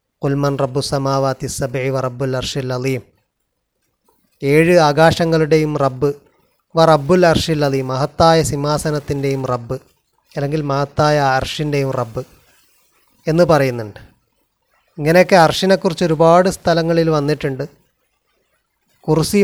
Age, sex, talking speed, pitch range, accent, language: 30-49, male, 85 wpm, 145-165 Hz, native, Malayalam